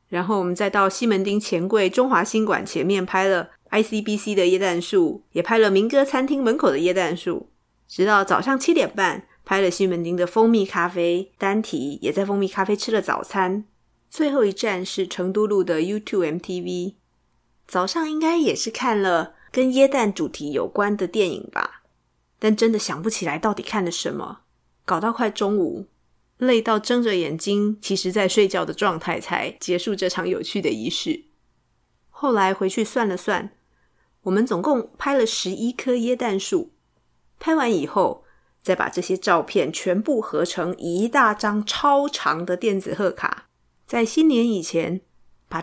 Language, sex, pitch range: Chinese, female, 185-235 Hz